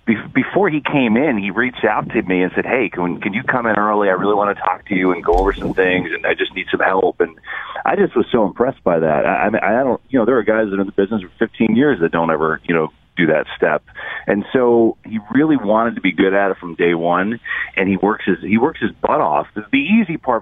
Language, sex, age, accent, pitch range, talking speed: English, male, 40-59, American, 90-115 Hz, 275 wpm